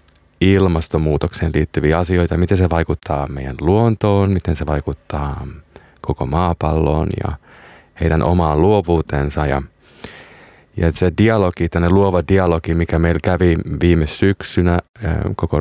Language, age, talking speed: Finnish, 30-49, 115 wpm